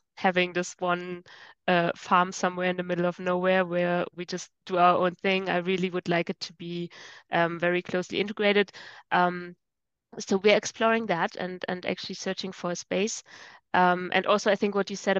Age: 20-39